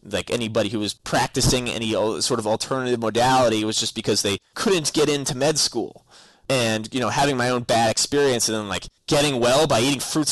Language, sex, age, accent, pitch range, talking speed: English, male, 20-39, American, 110-140 Hz, 210 wpm